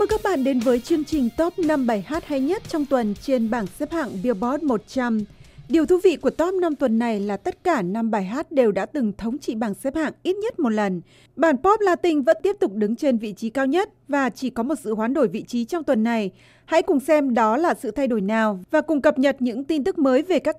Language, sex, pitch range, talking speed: Vietnamese, female, 235-310 Hz, 260 wpm